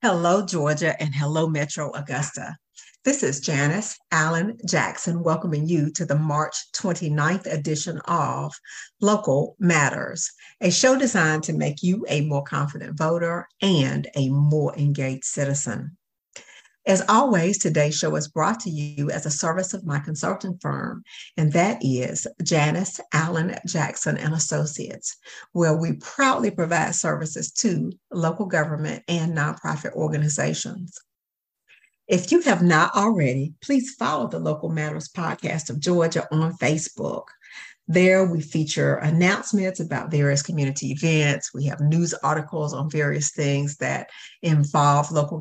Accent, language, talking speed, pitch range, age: American, English, 135 wpm, 150-175 Hz, 50-69